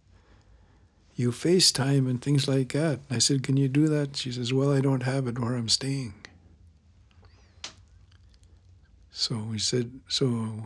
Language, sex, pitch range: English, male, 90-115 Hz